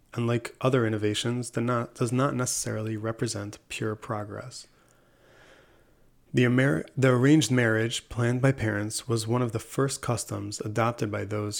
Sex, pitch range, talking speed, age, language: male, 110-125 Hz, 150 wpm, 30-49, English